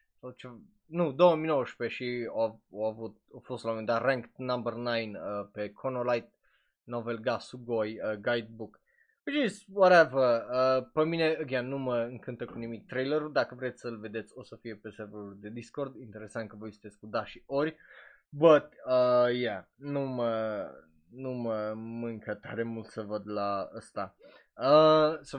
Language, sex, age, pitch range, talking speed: Romanian, male, 20-39, 115-170 Hz, 165 wpm